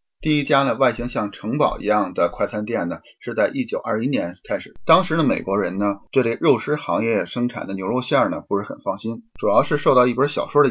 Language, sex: Chinese, male